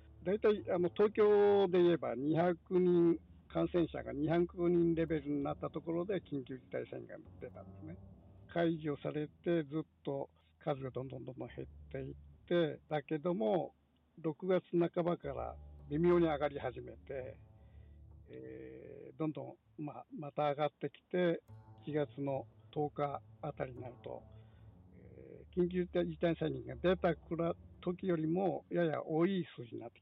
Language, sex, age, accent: Japanese, male, 60-79, native